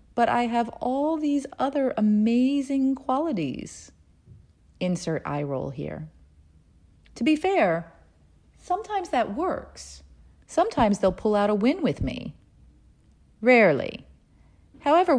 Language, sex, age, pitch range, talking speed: English, female, 40-59, 155-240 Hz, 110 wpm